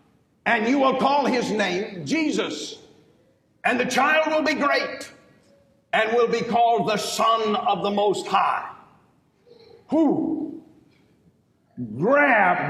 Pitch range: 215-310 Hz